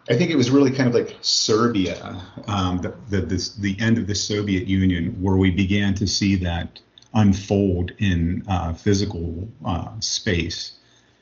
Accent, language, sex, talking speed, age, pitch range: American, English, male, 165 wpm, 50-69, 90-115 Hz